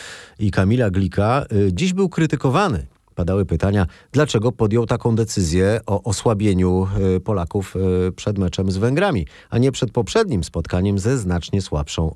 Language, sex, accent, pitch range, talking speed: Polish, male, native, 90-120 Hz, 135 wpm